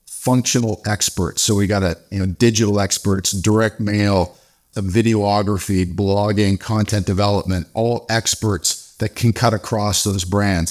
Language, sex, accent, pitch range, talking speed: English, male, American, 95-115 Hz, 135 wpm